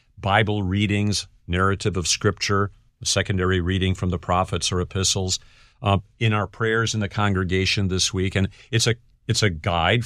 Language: English